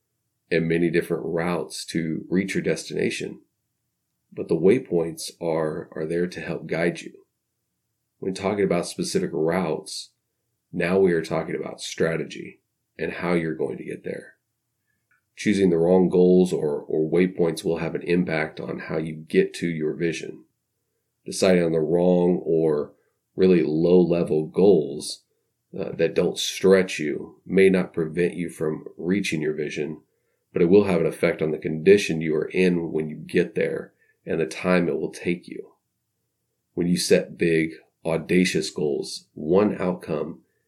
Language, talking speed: English, 155 wpm